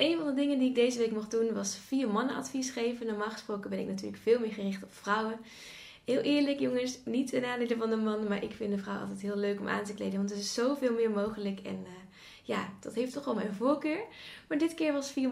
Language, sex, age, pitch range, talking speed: Dutch, female, 10-29, 205-255 Hz, 260 wpm